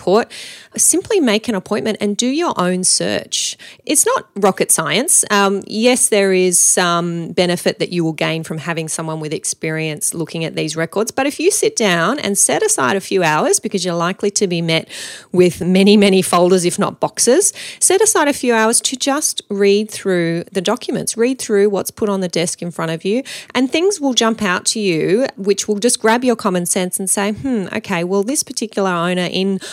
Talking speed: 205 wpm